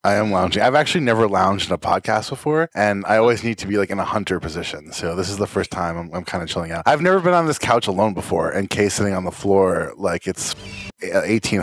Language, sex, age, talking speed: English, male, 20-39, 265 wpm